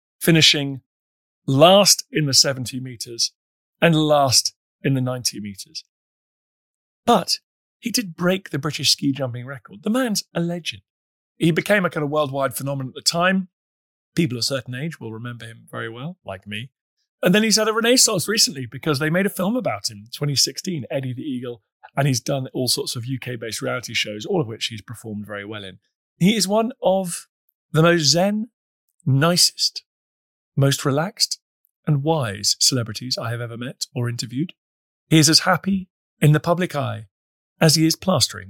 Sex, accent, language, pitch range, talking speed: male, British, English, 115-160 Hz, 180 wpm